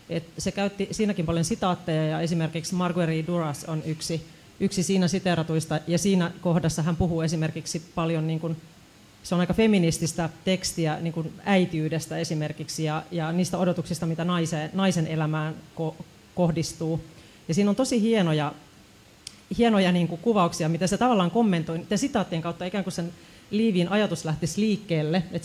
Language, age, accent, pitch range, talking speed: Finnish, 30-49, native, 160-190 Hz, 155 wpm